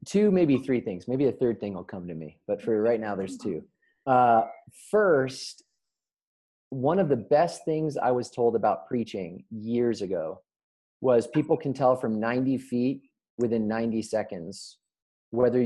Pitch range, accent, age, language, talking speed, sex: 110-140 Hz, American, 30-49, English, 165 wpm, male